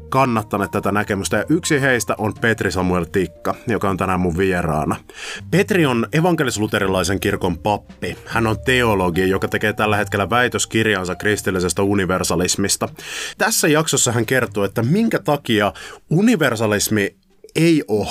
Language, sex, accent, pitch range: Finnish, male, native, 95-125 Hz